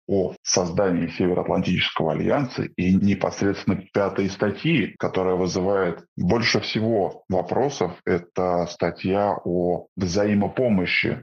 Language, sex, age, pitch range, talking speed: Russian, male, 20-39, 90-100 Hz, 90 wpm